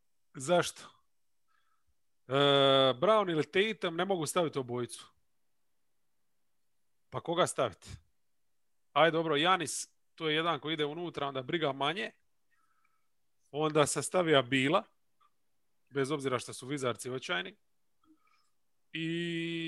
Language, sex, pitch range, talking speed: English, male, 135-175 Hz, 105 wpm